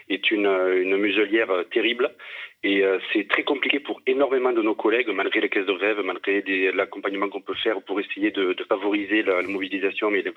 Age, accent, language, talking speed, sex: 40-59, French, French, 210 wpm, male